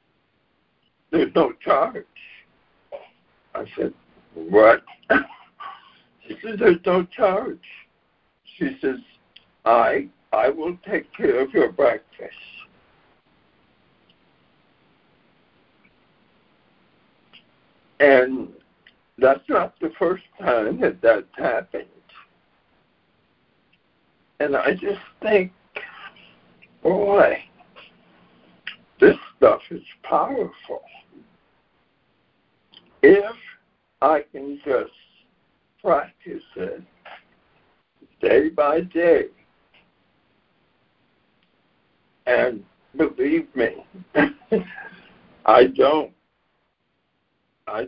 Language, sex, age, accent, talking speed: English, male, 60-79, American, 70 wpm